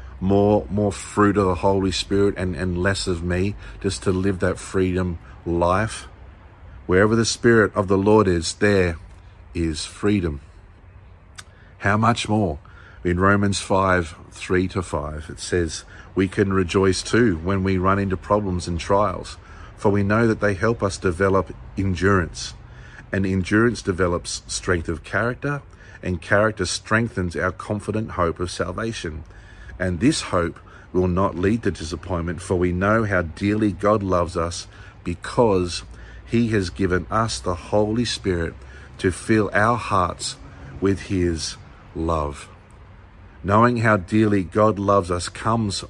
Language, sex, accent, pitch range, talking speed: English, male, Australian, 90-100 Hz, 145 wpm